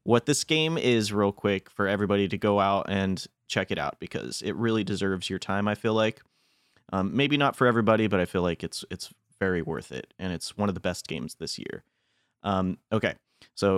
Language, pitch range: English, 95-115 Hz